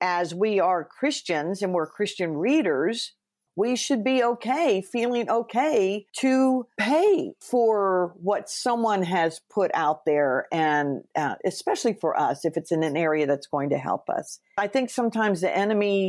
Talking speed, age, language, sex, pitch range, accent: 160 wpm, 50-69, English, female, 155-205 Hz, American